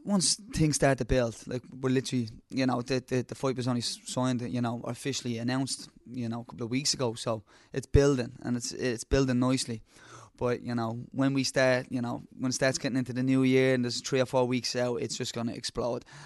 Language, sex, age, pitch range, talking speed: English, male, 20-39, 125-145 Hz, 235 wpm